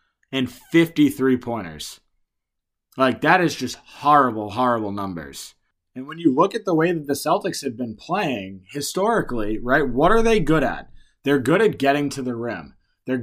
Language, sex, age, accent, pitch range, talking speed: English, male, 20-39, American, 120-150 Hz, 170 wpm